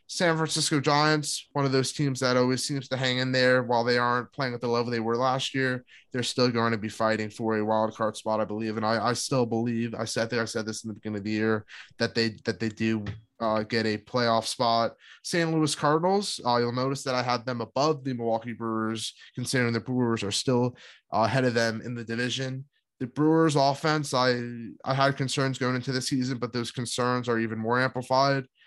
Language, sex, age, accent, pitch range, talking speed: English, male, 20-39, American, 115-130 Hz, 225 wpm